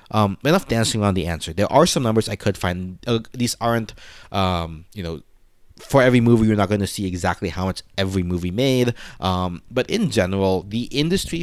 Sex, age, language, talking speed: male, 30-49, English, 205 wpm